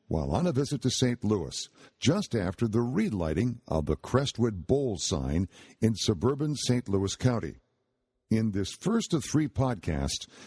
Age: 60-79